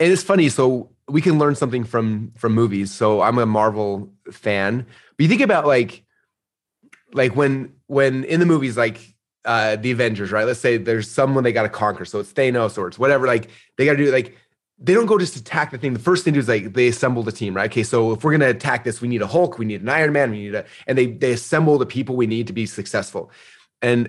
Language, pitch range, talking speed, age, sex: English, 105-130 Hz, 260 wpm, 30-49, male